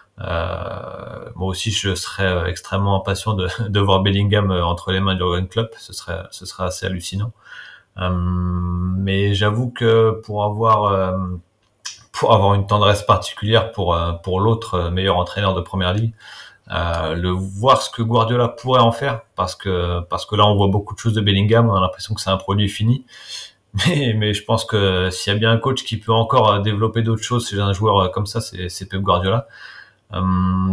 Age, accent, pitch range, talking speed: 30-49, French, 90-110 Hz, 190 wpm